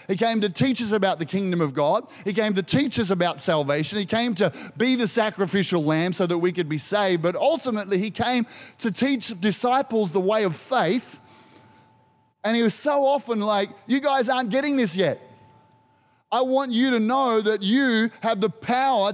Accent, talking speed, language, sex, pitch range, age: Australian, 200 wpm, English, male, 205-255 Hz, 30-49